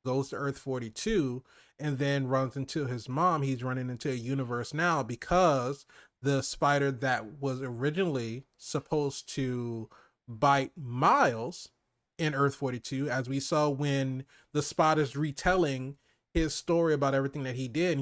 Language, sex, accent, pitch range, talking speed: English, male, American, 135-165 Hz, 150 wpm